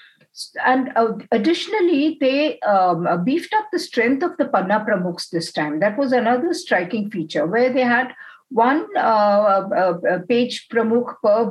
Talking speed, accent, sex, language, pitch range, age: 145 wpm, Indian, female, English, 190-255 Hz, 50-69